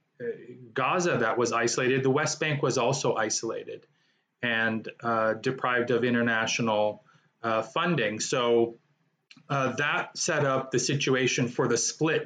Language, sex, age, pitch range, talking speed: English, male, 30-49, 115-140 Hz, 130 wpm